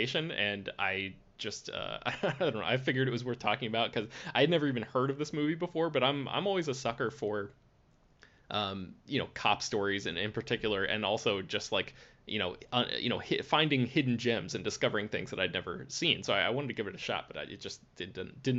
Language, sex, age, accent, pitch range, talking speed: English, male, 20-39, American, 115-150 Hz, 235 wpm